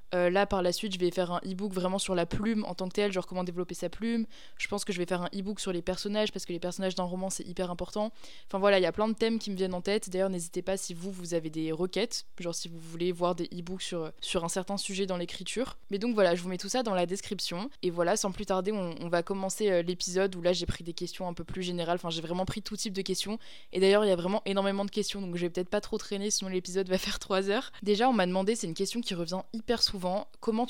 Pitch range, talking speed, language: 185-215 Hz, 300 wpm, French